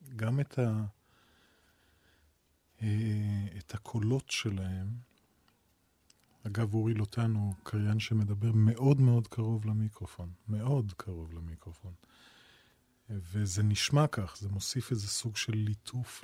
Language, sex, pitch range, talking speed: Hebrew, male, 105-120 Hz, 105 wpm